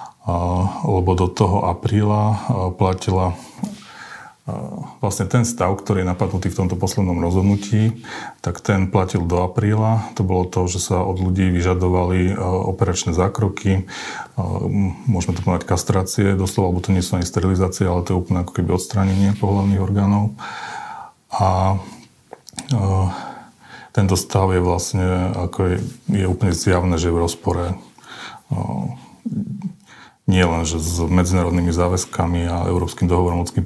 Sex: male